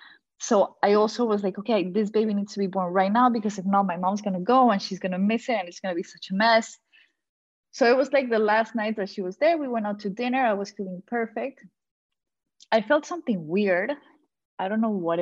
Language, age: English, 20-39